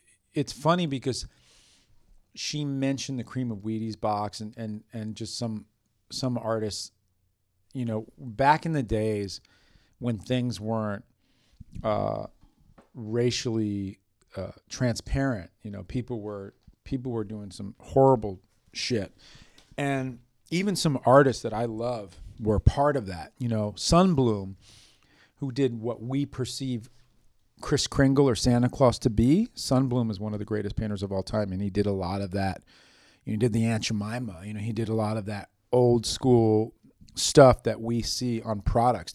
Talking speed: 160 wpm